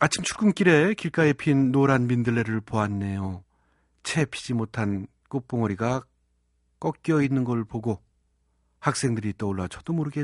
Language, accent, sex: Korean, native, male